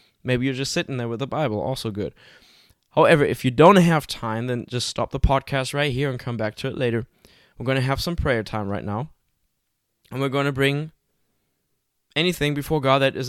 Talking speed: 215 wpm